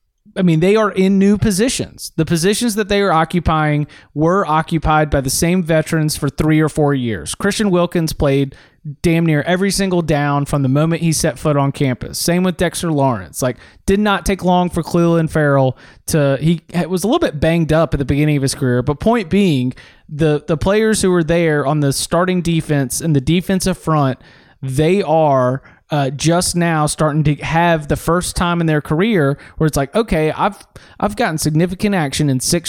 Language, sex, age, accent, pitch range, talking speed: English, male, 20-39, American, 145-175 Hz, 200 wpm